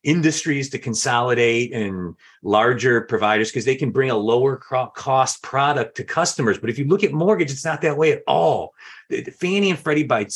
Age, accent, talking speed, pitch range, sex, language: 40-59, American, 185 wpm, 115-175 Hz, male, English